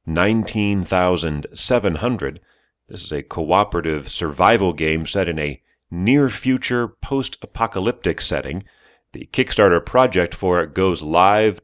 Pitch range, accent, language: 80-115 Hz, American, English